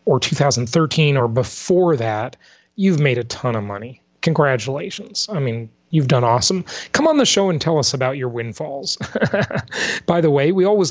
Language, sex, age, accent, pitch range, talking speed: English, male, 30-49, American, 125-170 Hz, 175 wpm